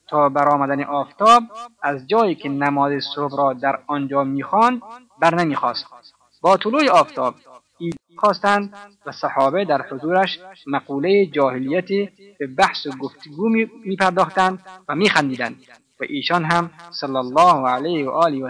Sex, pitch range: male, 140-200 Hz